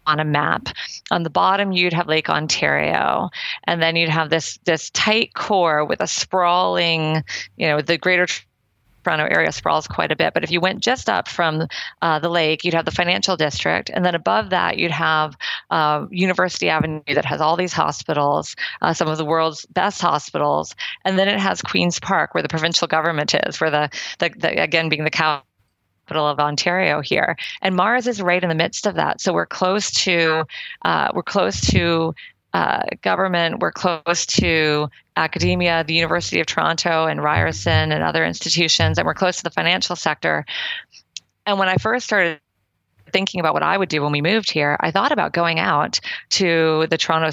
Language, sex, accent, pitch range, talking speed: English, female, American, 155-185 Hz, 190 wpm